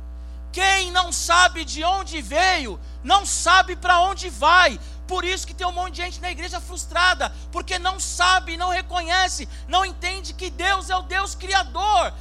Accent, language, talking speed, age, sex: Brazilian, Portuguese, 170 wpm, 50-69, male